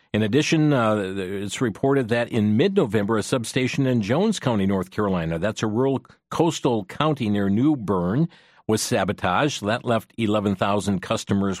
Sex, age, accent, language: male, 50-69, American, English